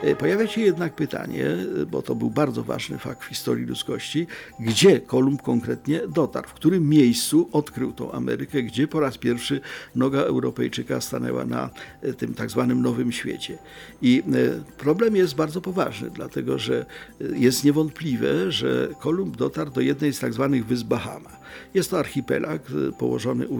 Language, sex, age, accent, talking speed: Polish, male, 50-69, native, 155 wpm